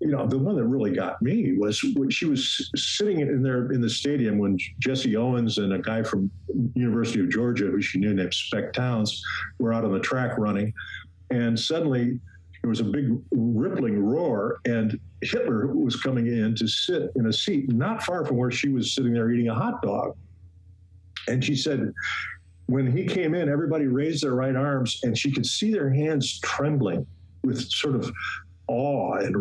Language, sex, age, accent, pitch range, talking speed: English, male, 50-69, American, 100-130 Hz, 190 wpm